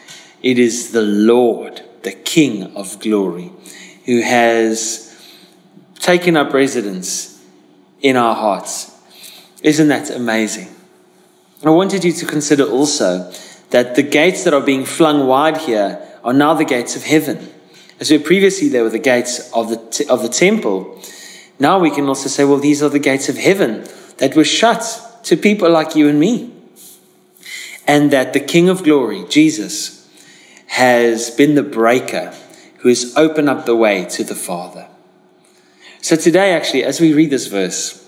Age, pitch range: 30-49, 115-155 Hz